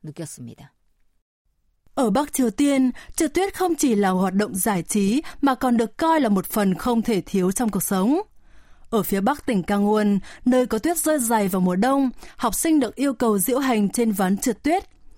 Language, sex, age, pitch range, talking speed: Vietnamese, female, 20-39, 205-285 Hz, 200 wpm